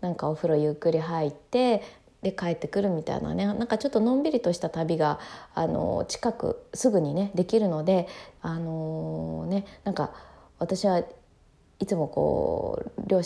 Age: 20-39